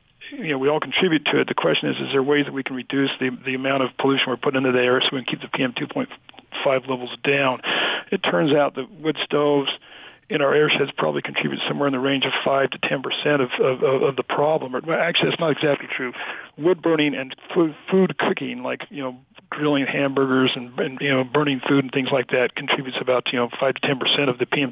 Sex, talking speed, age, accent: male, 235 wpm, 50-69, American